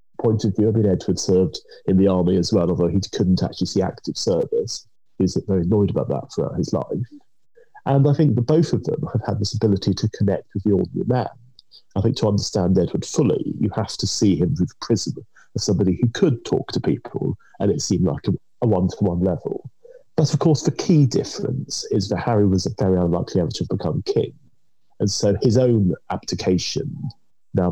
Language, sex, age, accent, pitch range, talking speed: English, male, 30-49, British, 95-130 Hz, 210 wpm